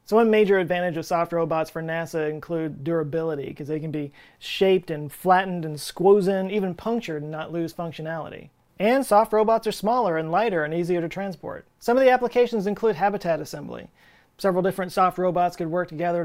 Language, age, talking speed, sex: English, 30-49, 190 wpm, male